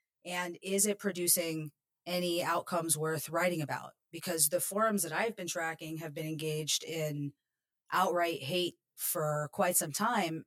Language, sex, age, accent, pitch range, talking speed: English, female, 30-49, American, 150-180 Hz, 150 wpm